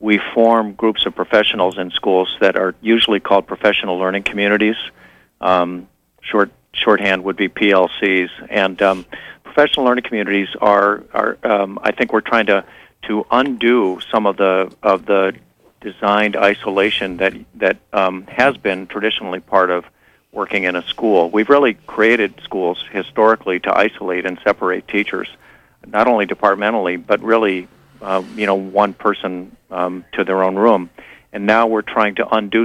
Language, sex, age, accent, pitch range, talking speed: English, male, 50-69, American, 95-110 Hz, 155 wpm